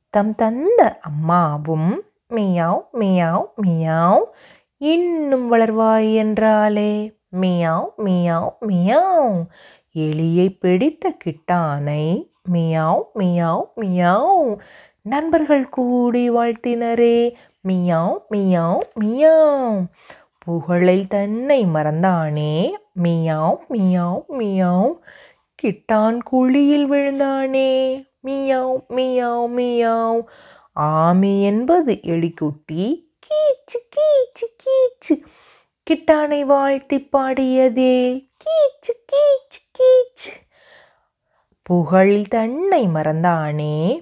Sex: female